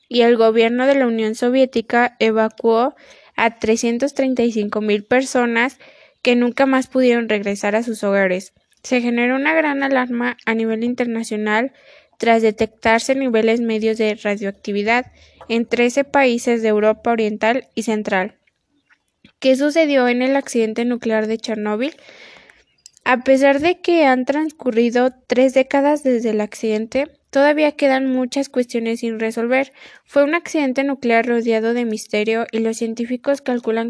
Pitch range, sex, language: 220-260 Hz, female, Spanish